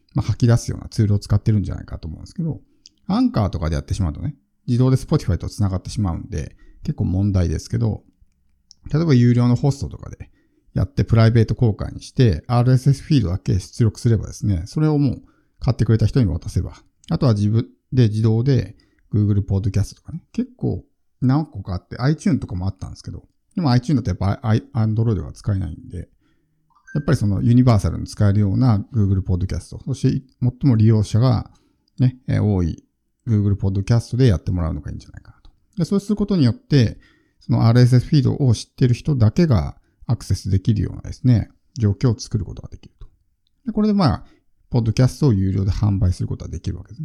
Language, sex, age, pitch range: Japanese, male, 50-69, 95-130 Hz